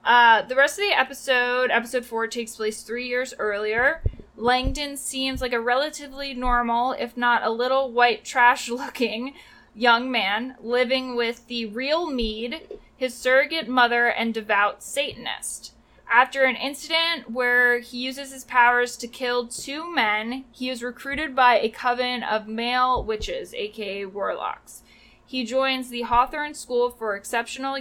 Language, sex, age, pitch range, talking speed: English, female, 20-39, 230-265 Hz, 150 wpm